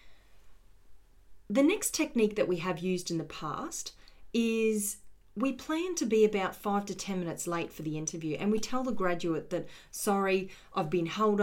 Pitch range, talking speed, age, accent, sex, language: 160-205 Hz, 180 wpm, 30-49, Australian, female, English